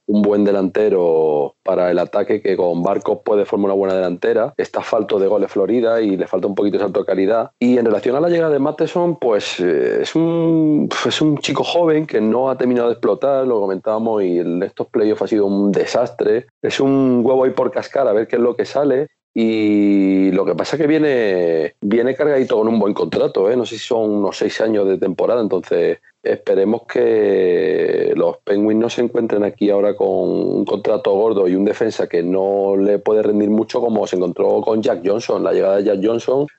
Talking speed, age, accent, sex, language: 210 wpm, 30-49, Spanish, male, Spanish